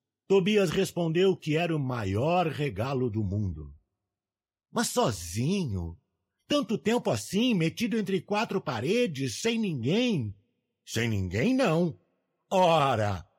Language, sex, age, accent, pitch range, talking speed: Portuguese, male, 60-79, Brazilian, 135-220 Hz, 120 wpm